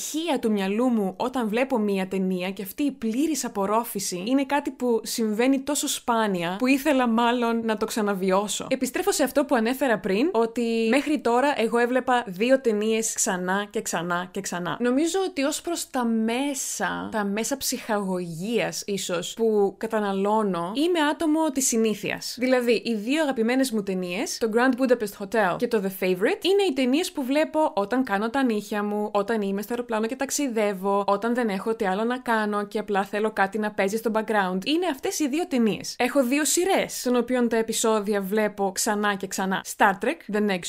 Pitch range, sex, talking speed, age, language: 205-265 Hz, female, 180 wpm, 20-39, Greek